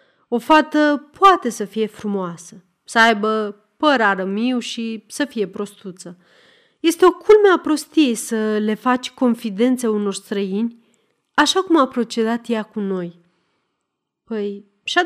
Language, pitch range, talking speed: Romanian, 200-295 Hz, 135 wpm